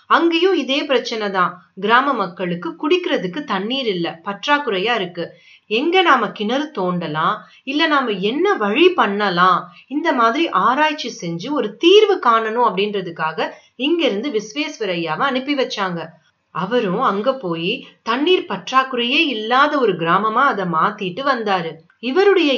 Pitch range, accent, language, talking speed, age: 185-285 Hz, native, Tamil, 110 wpm, 30-49